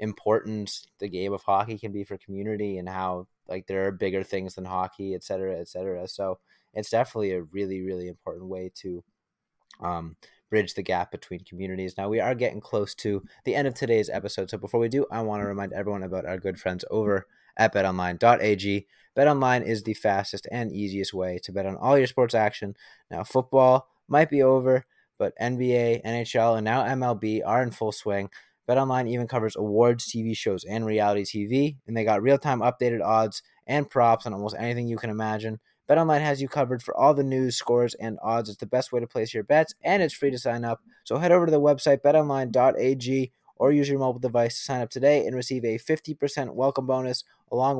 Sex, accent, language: male, American, English